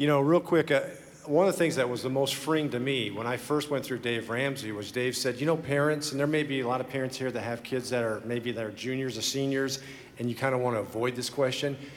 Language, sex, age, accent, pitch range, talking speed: English, male, 50-69, American, 125-160 Hz, 290 wpm